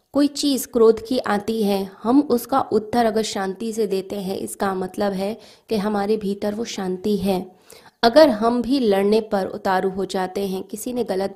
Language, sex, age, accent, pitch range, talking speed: Hindi, female, 20-39, native, 195-230 Hz, 185 wpm